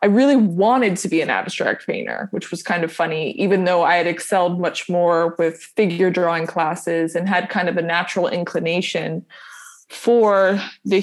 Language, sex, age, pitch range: English, female, 20-39, 170-200 Hz